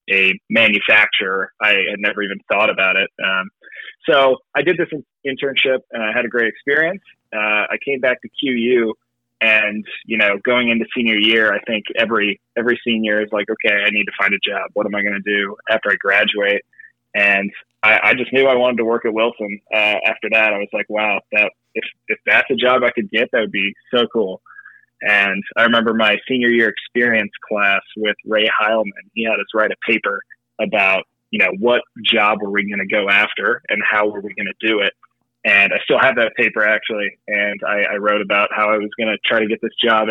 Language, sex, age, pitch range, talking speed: English, male, 20-39, 105-120 Hz, 220 wpm